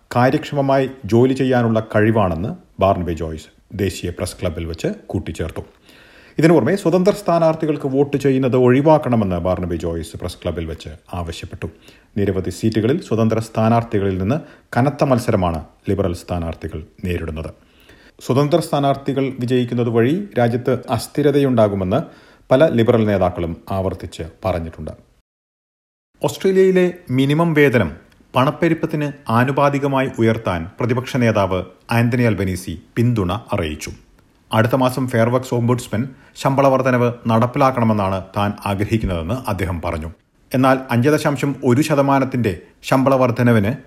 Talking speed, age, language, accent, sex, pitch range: 95 wpm, 40-59, Malayalam, native, male, 95-135 Hz